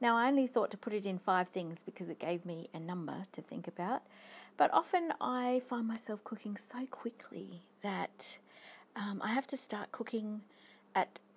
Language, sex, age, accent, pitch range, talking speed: English, female, 40-59, Australian, 185-245 Hz, 185 wpm